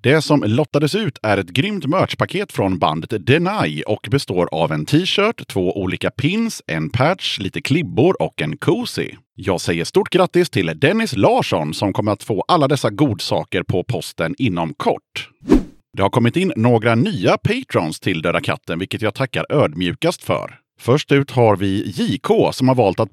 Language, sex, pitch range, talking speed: Swedish, male, 95-140 Hz, 175 wpm